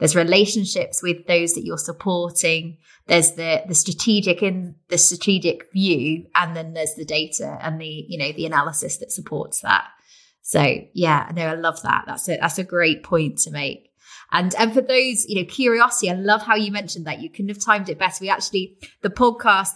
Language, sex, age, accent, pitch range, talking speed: English, female, 20-39, British, 165-210 Hz, 205 wpm